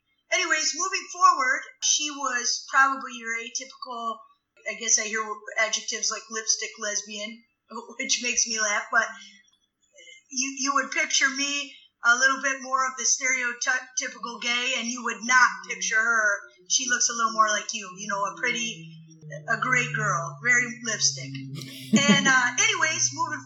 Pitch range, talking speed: 220-275 Hz, 155 wpm